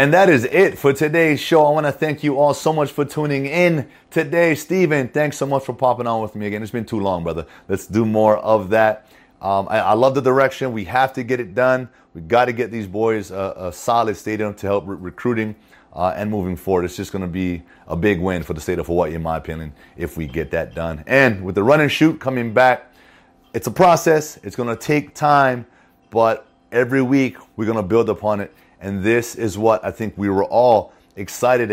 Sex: male